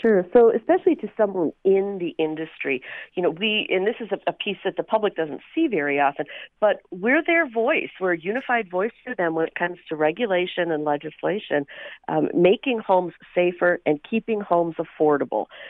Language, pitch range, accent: English, 165-225 Hz, American